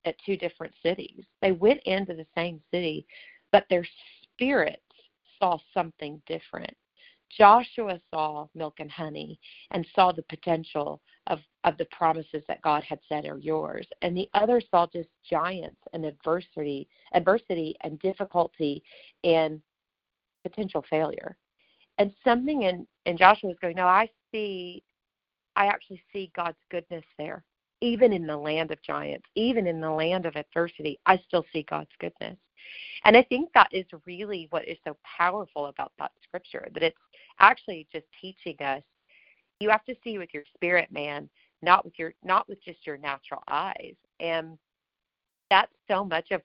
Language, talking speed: English, 160 wpm